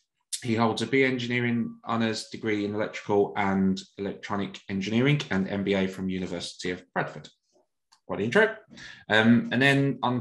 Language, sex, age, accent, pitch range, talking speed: English, male, 20-39, British, 100-120 Hz, 140 wpm